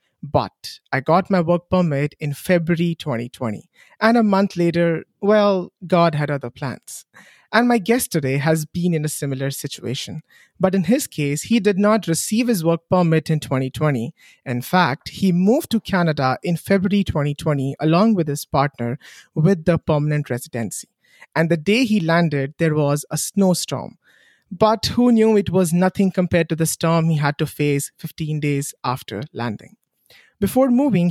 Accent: Indian